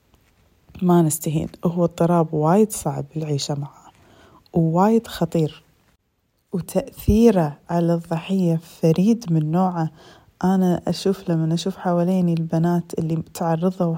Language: Arabic